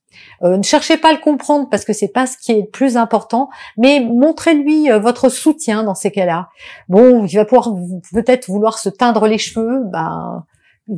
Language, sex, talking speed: French, female, 195 wpm